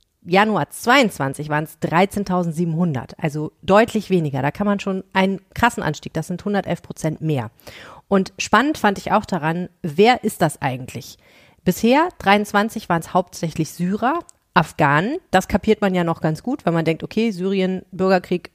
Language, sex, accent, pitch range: German, female, German, 160-210 Hz